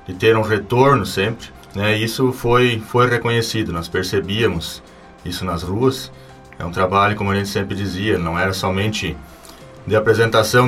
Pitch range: 95-115 Hz